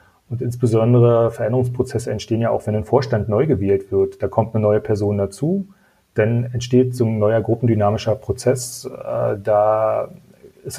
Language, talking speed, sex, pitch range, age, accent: German, 150 wpm, male, 105-125 Hz, 40-59, German